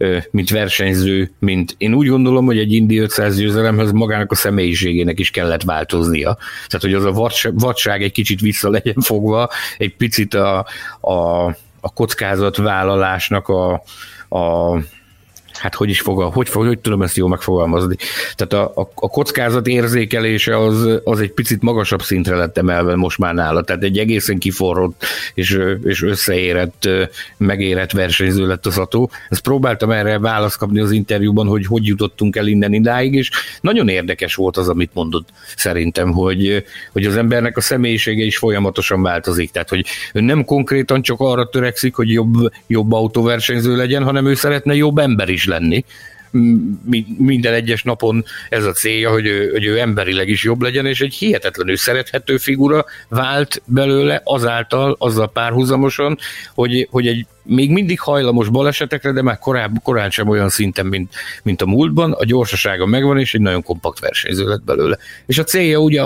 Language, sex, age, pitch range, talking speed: Hungarian, male, 50-69, 95-125 Hz, 165 wpm